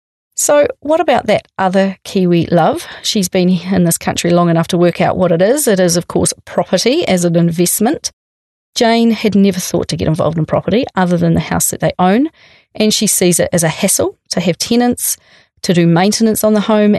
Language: English